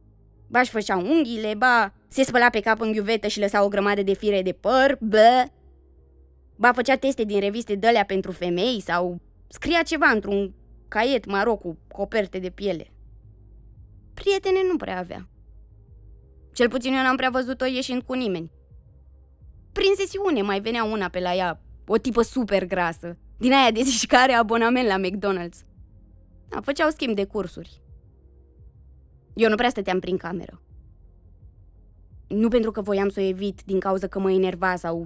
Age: 20-39